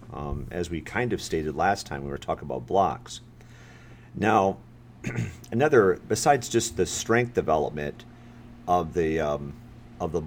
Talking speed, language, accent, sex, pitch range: 145 wpm, English, American, male, 80-115 Hz